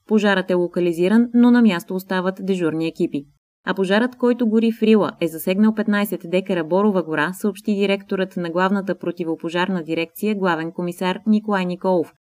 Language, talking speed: Bulgarian, 150 wpm